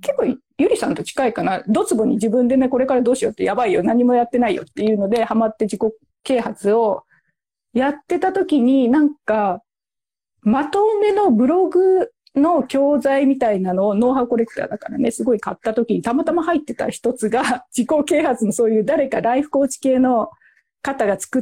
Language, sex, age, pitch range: Japanese, female, 40-59, 215-285 Hz